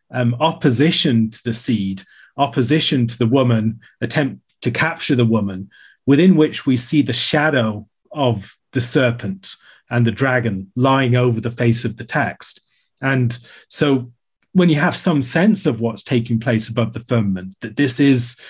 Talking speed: 160 wpm